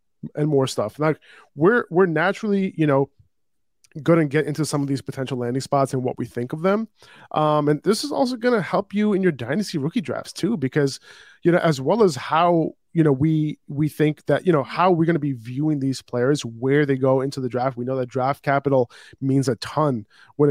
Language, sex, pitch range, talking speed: English, male, 130-160 Hz, 230 wpm